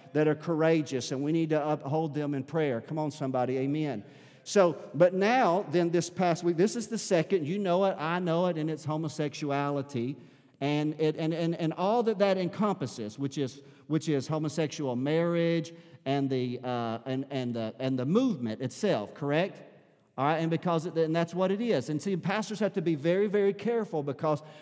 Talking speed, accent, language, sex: 195 wpm, American, English, male